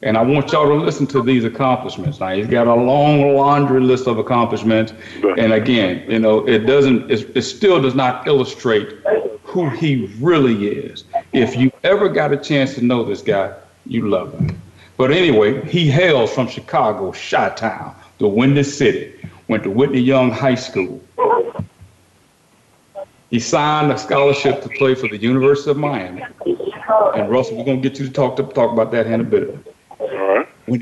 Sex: male